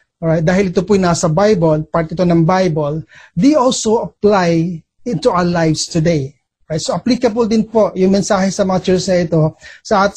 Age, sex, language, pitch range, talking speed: 30-49, male, Filipino, 170-210 Hz, 195 wpm